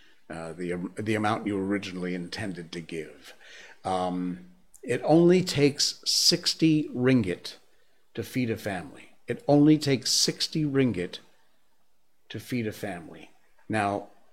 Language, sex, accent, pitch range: English, male, American, 95-125 Hz